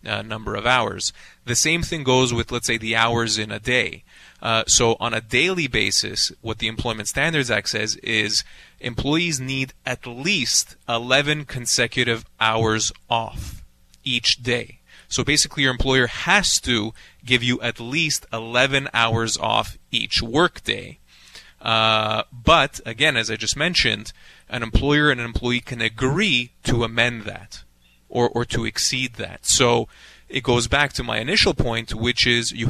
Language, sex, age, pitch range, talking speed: English, male, 30-49, 110-130 Hz, 160 wpm